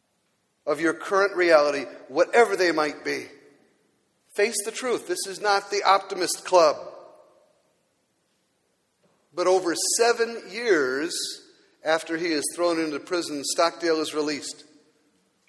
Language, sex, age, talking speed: English, male, 50-69, 115 wpm